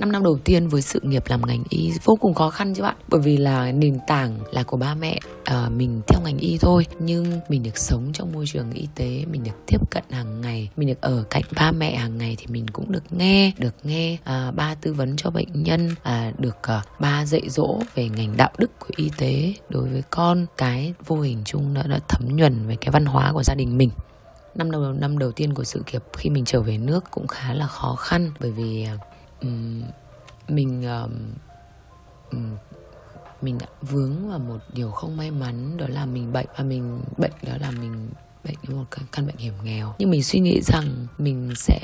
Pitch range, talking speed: 120-155 Hz, 225 wpm